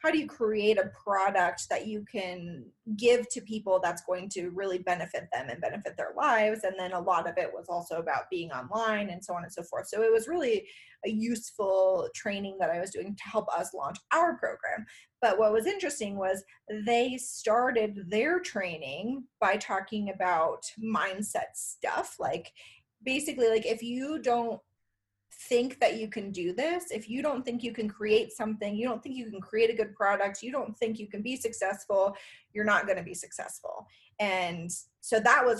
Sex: female